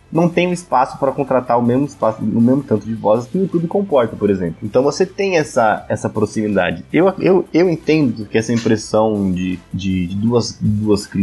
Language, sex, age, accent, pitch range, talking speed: Portuguese, male, 20-39, Brazilian, 120-170 Hz, 205 wpm